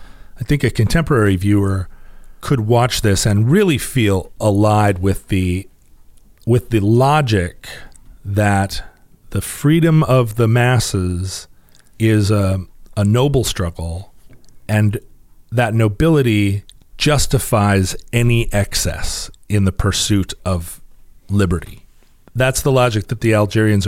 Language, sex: English, male